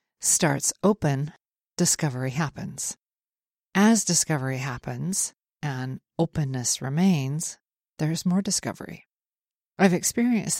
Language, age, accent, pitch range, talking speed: English, 40-59, American, 145-180 Hz, 85 wpm